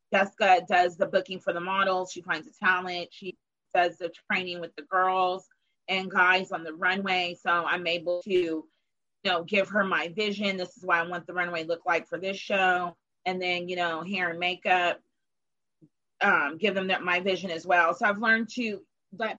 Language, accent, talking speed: English, American, 200 wpm